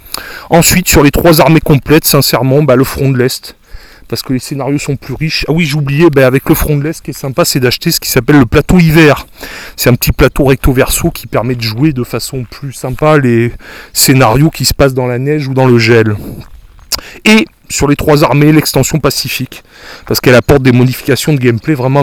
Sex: male